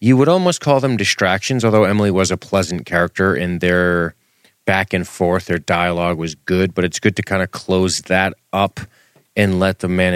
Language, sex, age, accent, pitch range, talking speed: English, male, 30-49, American, 85-100 Hz, 200 wpm